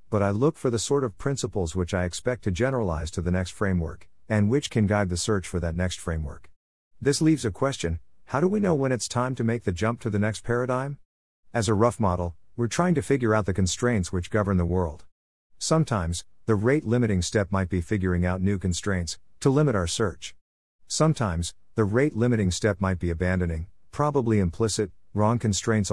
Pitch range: 90-115 Hz